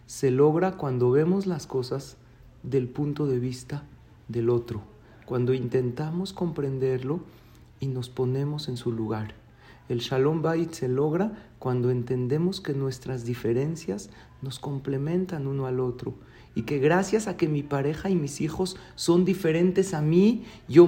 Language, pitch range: Spanish, 125-165 Hz